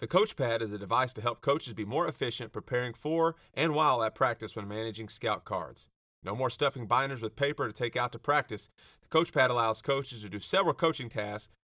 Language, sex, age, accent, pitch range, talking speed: English, male, 30-49, American, 110-140 Hz, 210 wpm